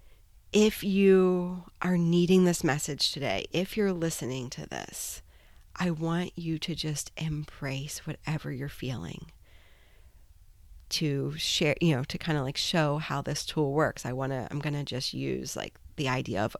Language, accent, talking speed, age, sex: English, American, 165 wpm, 30-49, female